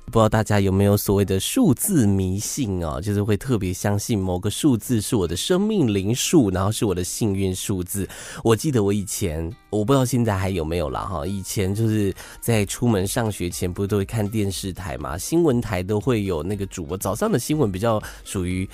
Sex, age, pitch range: male, 20-39, 95-130 Hz